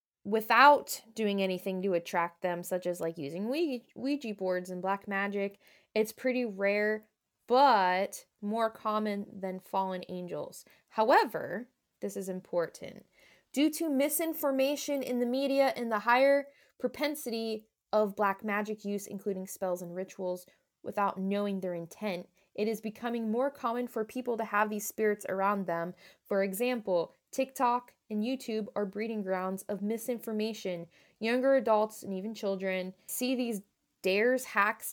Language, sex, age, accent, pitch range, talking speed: English, female, 20-39, American, 195-245 Hz, 140 wpm